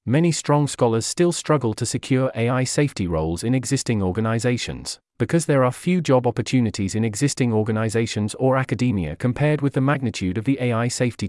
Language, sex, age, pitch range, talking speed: English, male, 40-59, 110-140 Hz, 170 wpm